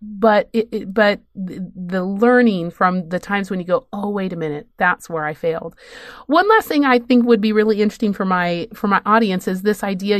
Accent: American